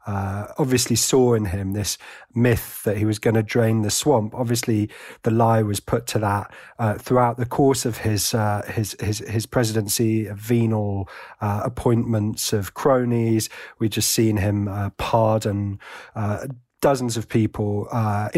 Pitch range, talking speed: 105-130 Hz, 160 wpm